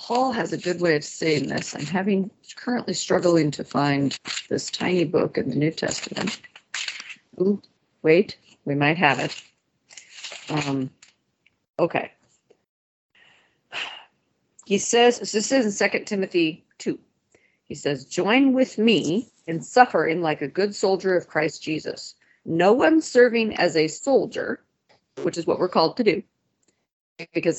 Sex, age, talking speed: female, 40-59, 140 wpm